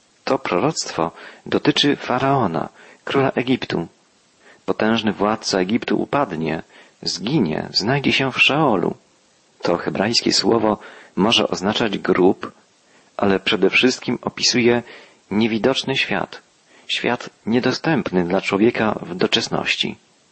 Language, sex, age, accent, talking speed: Polish, male, 40-59, native, 95 wpm